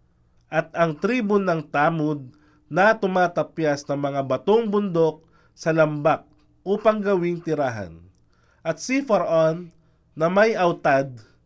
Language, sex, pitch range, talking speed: Filipino, male, 150-200 Hz, 115 wpm